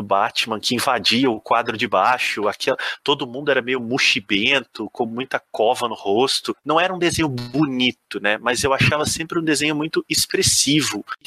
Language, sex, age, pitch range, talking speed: Portuguese, male, 30-49, 120-170 Hz, 175 wpm